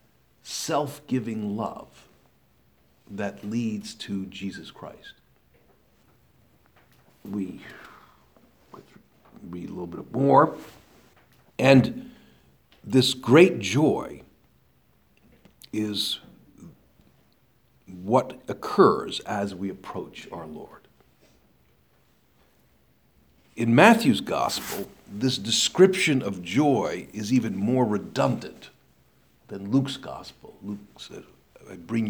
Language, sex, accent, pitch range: English, male, American, 90-130 Hz